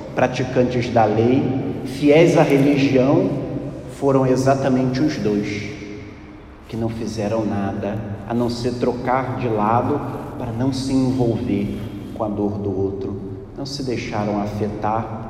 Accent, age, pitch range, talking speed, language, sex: Brazilian, 40-59, 105-125 Hz, 130 wpm, Portuguese, male